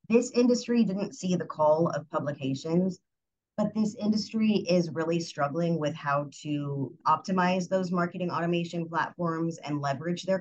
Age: 30-49